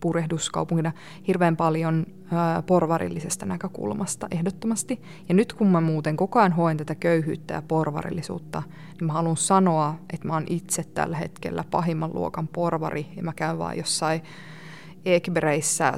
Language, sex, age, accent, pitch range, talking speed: Finnish, female, 20-39, native, 165-180 Hz, 140 wpm